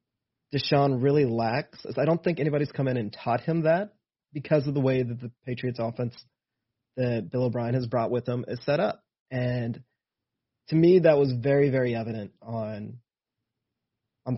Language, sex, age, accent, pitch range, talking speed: English, male, 30-49, American, 120-145 Hz, 175 wpm